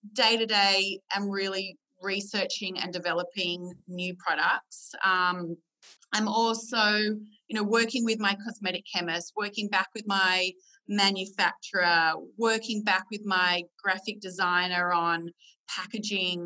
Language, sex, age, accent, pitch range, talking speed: English, female, 30-49, Australian, 180-220 Hz, 115 wpm